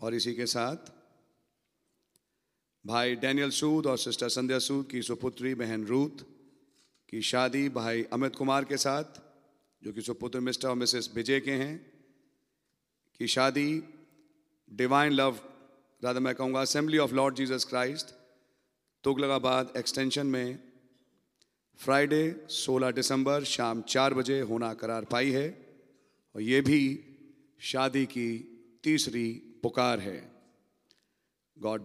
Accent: Indian